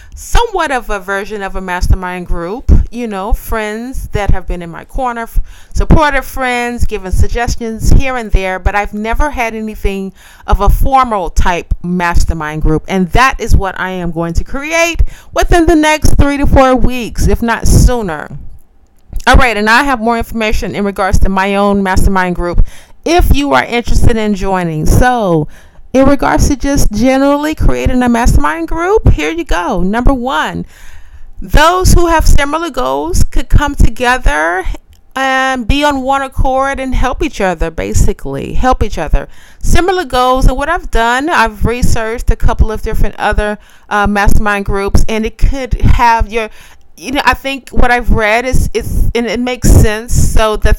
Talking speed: 170 wpm